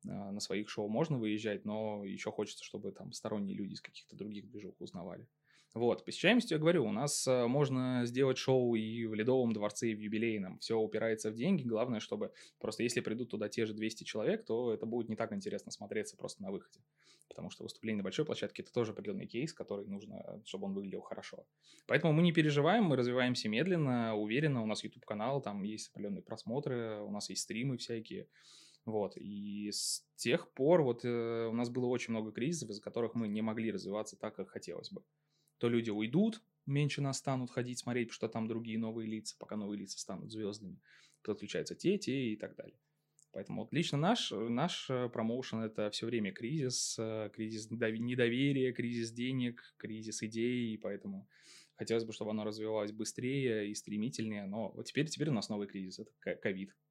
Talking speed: 190 wpm